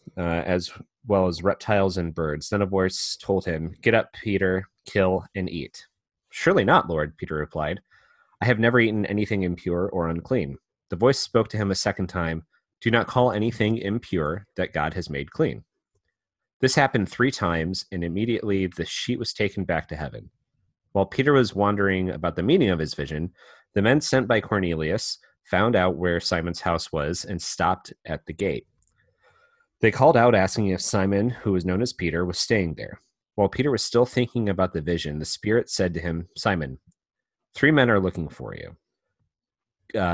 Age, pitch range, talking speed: 30-49, 85-115 Hz, 185 wpm